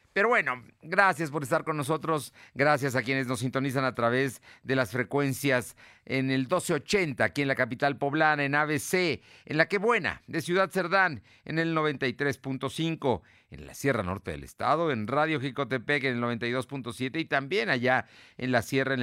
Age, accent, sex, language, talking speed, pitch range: 50-69, Mexican, male, Spanish, 175 wpm, 105-145 Hz